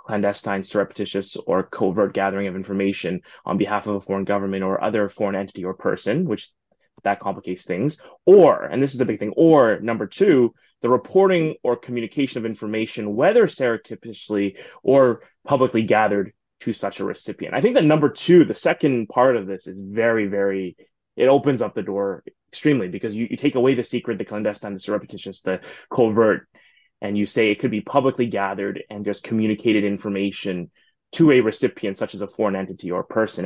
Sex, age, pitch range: male, 20-39, 100-120 Hz